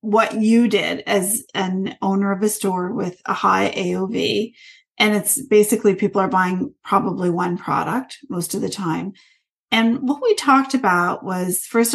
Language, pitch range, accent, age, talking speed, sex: English, 185-230 Hz, American, 40-59, 165 wpm, female